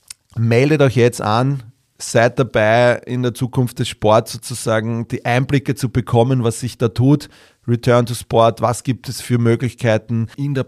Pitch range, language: 105-120 Hz, German